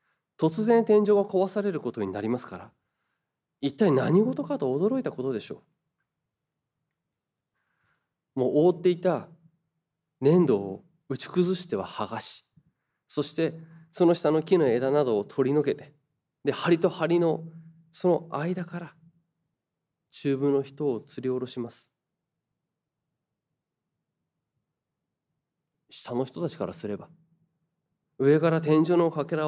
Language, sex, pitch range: Japanese, male, 140-175 Hz